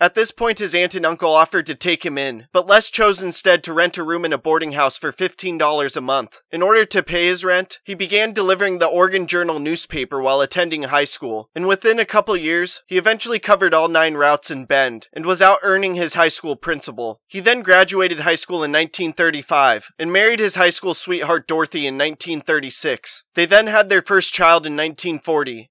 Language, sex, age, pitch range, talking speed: English, male, 20-39, 155-190 Hz, 210 wpm